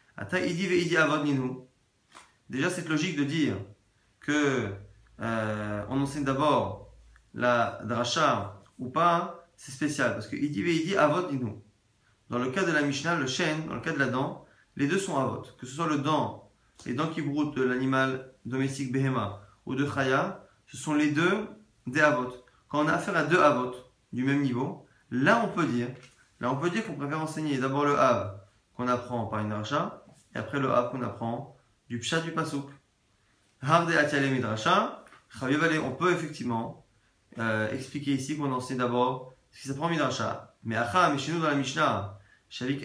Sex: male